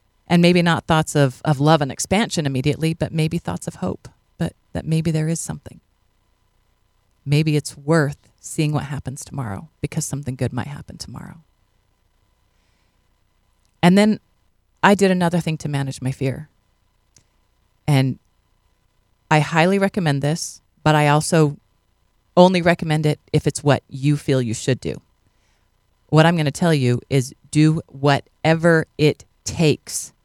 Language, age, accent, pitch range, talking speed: English, 40-59, American, 125-165 Hz, 145 wpm